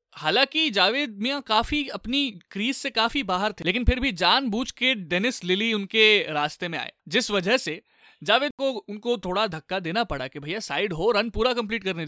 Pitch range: 170-230 Hz